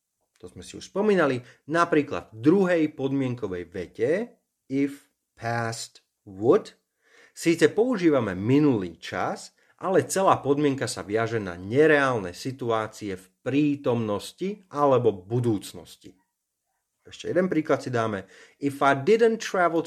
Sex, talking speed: male, 115 wpm